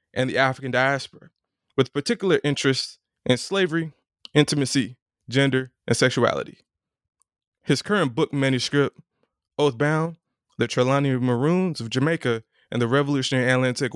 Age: 20-39